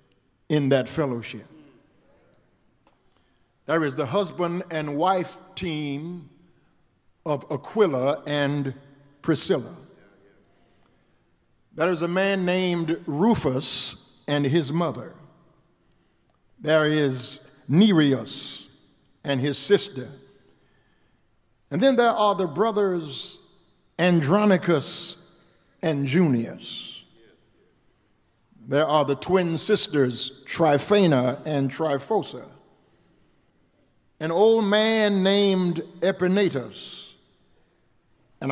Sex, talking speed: male, 80 wpm